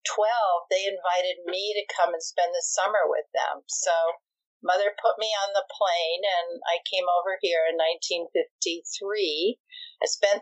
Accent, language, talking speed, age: American, English, 160 wpm, 50-69